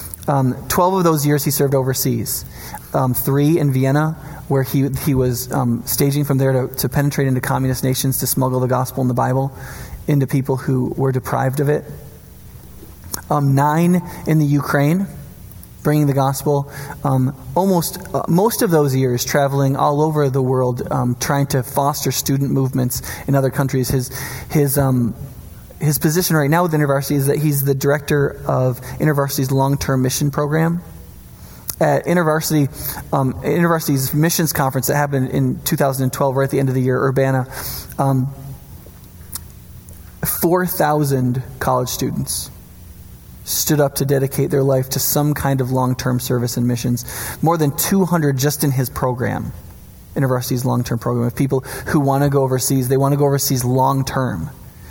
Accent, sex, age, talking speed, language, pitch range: American, male, 20-39, 160 wpm, English, 130-145 Hz